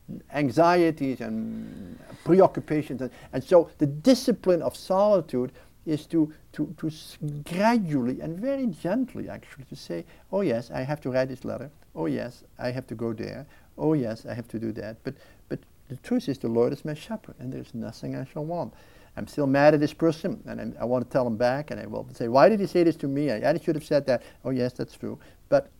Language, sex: English, male